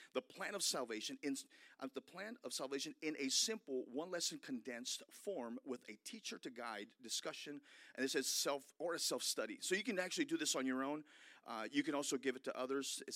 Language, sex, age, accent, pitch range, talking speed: English, male, 40-59, American, 130-180 Hz, 225 wpm